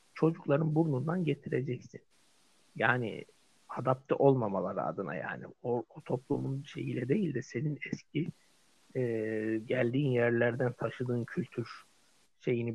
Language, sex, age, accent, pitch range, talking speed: Turkish, male, 60-79, native, 115-150 Hz, 105 wpm